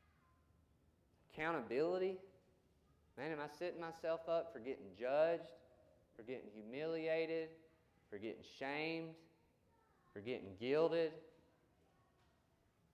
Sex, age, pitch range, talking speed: male, 30-49, 110-145 Hz, 90 wpm